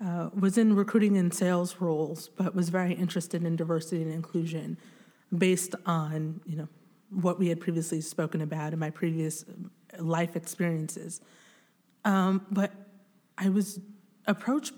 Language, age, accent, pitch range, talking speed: English, 30-49, American, 165-200 Hz, 140 wpm